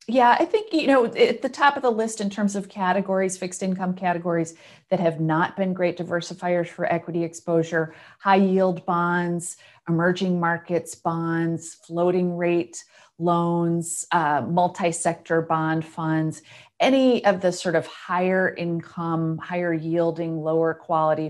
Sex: female